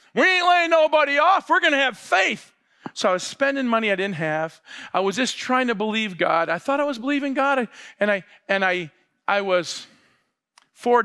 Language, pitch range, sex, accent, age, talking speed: English, 165-230 Hz, male, American, 40-59, 205 wpm